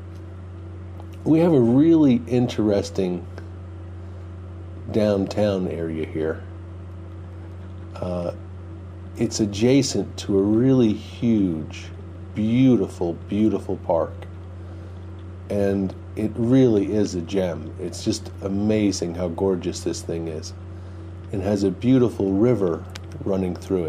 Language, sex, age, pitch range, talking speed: English, male, 50-69, 90-105 Hz, 100 wpm